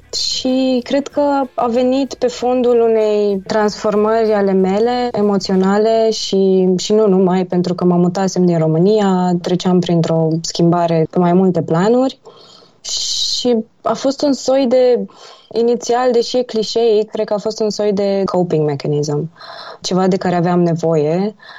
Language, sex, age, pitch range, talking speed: Romanian, female, 20-39, 170-220 Hz, 150 wpm